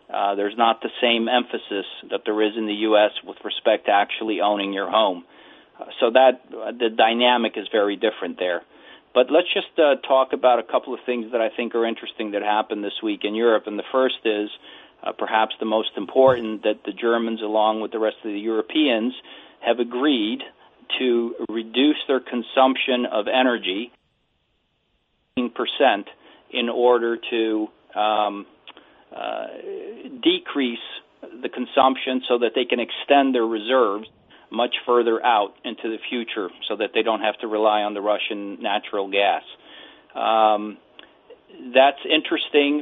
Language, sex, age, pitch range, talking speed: English, male, 40-59, 110-130 Hz, 160 wpm